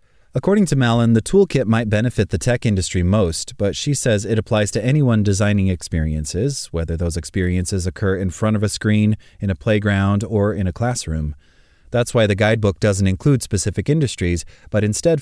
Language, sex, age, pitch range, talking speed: English, male, 30-49, 95-125 Hz, 180 wpm